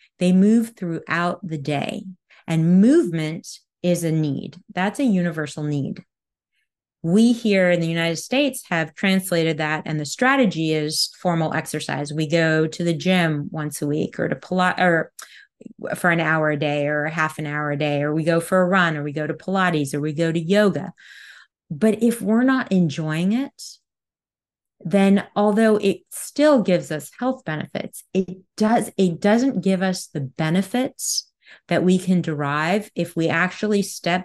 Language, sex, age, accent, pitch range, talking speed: English, female, 30-49, American, 160-215 Hz, 175 wpm